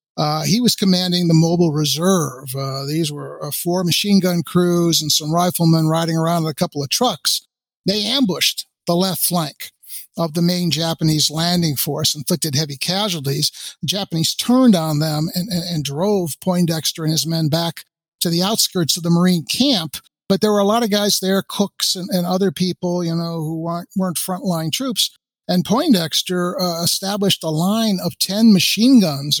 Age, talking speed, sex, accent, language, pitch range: 50-69, 185 wpm, male, American, English, 160-205 Hz